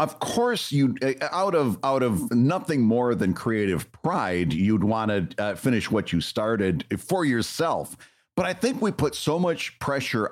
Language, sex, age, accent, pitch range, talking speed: English, male, 50-69, American, 105-145 Hz, 175 wpm